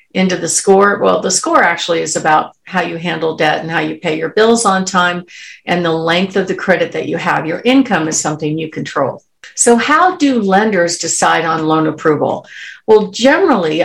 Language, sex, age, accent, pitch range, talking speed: English, female, 50-69, American, 175-220 Hz, 200 wpm